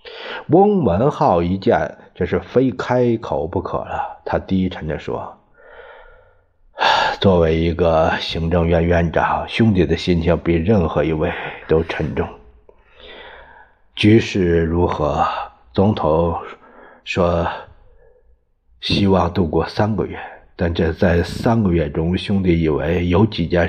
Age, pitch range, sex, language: 50-69, 85-100 Hz, male, Chinese